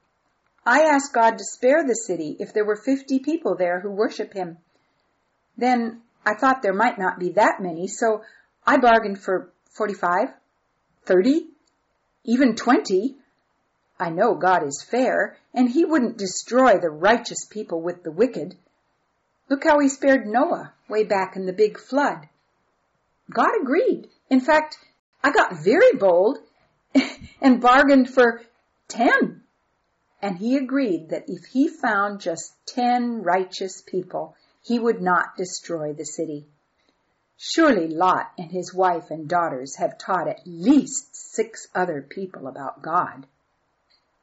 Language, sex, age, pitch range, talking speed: English, female, 50-69, 180-260 Hz, 140 wpm